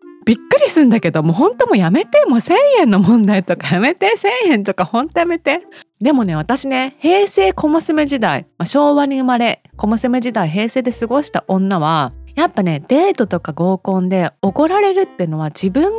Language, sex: Japanese, female